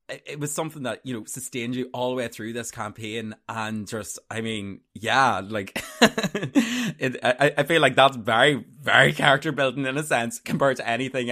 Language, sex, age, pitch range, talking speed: English, male, 20-39, 110-145 Hz, 190 wpm